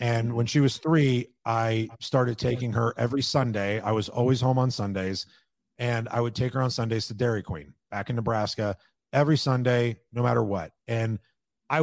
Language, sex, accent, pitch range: English, male, American, 115-145 Hz